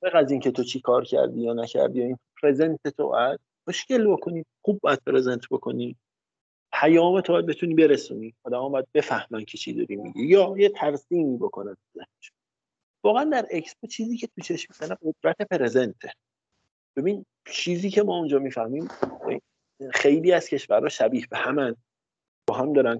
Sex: male